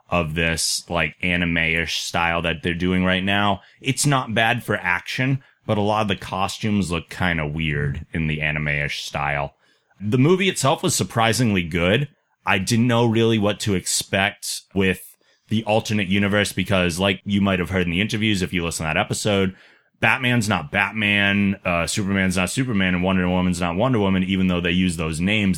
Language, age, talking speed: English, 30-49, 185 wpm